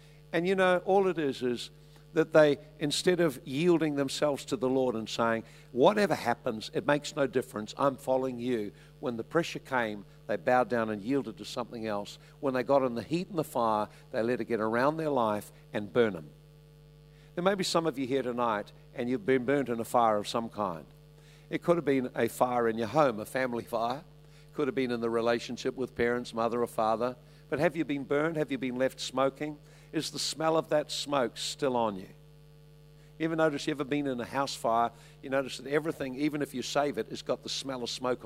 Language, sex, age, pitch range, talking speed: English, male, 60-79, 125-150 Hz, 225 wpm